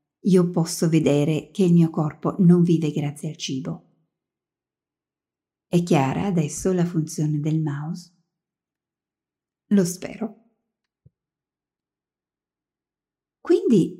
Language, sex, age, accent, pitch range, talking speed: English, female, 50-69, Italian, 155-195 Hz, 95 wpm